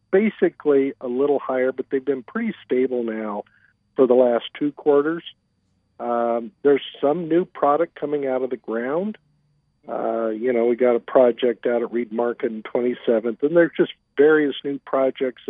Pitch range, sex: 115-135 Hz, male